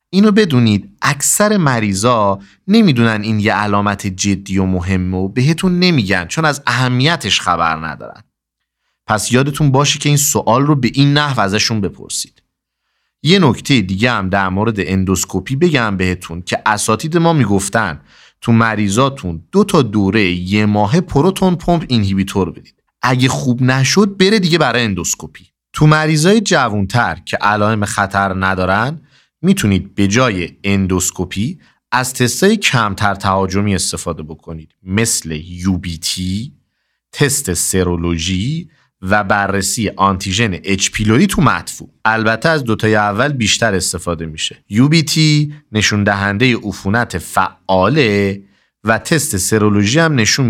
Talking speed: 125 wpm